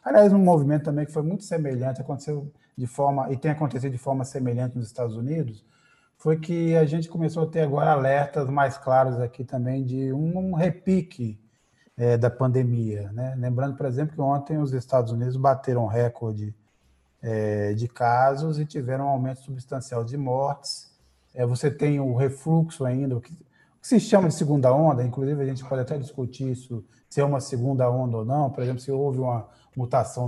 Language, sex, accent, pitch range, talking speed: Portuguese, male, Brazilian, 125-155 Hz, 190 wpm